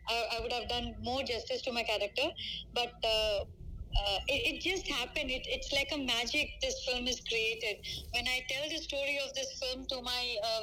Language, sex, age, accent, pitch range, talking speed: Telugu, female, 20-39, native, 230-275 Hz, 205 wpm